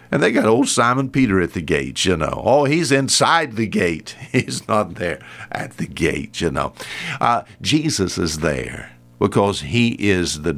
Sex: male